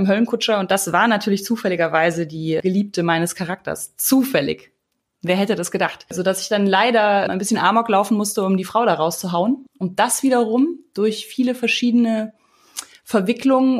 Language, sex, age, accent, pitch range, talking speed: German, female, 20-39, German, 175-225 Hz, 155 wpm